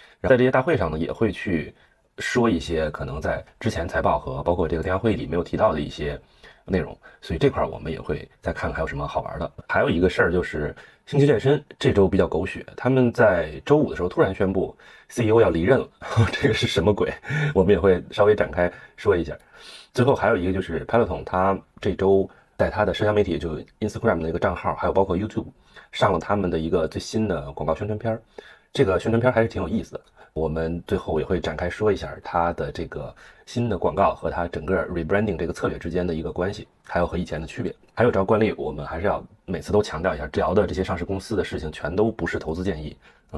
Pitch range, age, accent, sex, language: 85-110 Hz, 30-49, native, male, Chinese